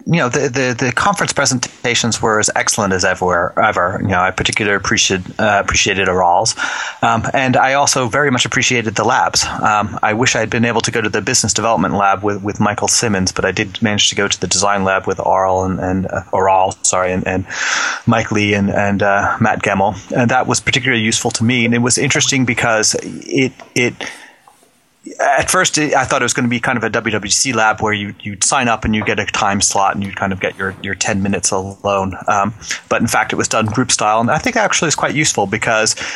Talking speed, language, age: 235 wpm, English, 30-49